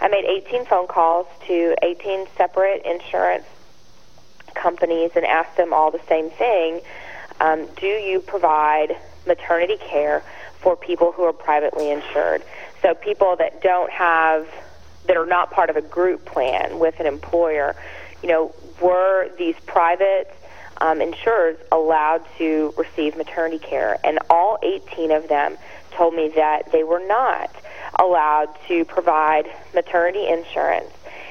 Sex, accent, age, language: female, American, 30-49, English